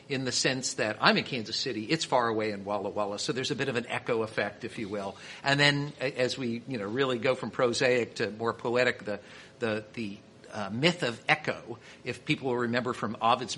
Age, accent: 50-69, American